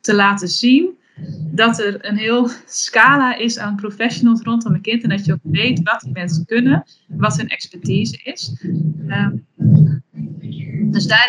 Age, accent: 20-39, Dutch